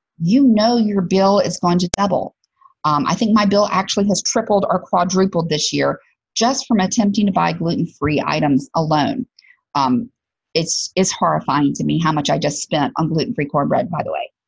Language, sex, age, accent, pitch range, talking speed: English, female, 40-59, American, 185-230 Hz, 185 wpm